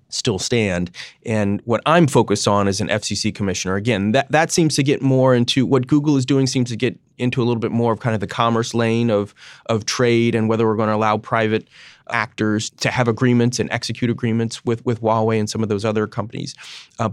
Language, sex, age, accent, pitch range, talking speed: English, male, 30-49, American, 100-115 Hz, 225 wpm